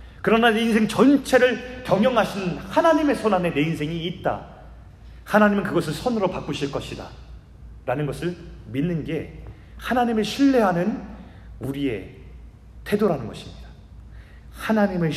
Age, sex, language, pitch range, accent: 30-49, male, Korean, 120-195 Hz, native